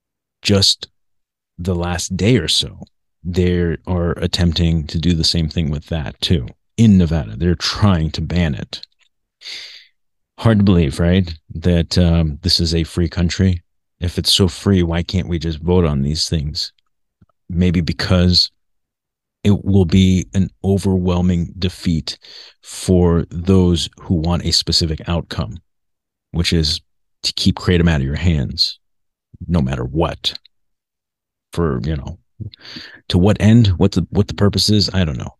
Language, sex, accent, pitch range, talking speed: English, male, American, 80-95 Hz, 150 wpm